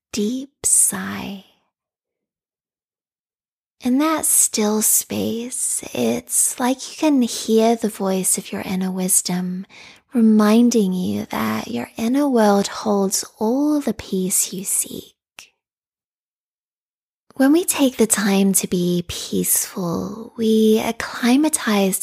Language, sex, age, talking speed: English, female, 20-39, 105 wpm